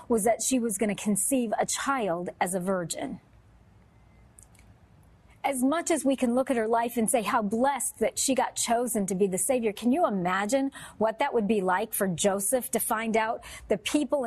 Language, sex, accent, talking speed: English, female, American, 200 wpm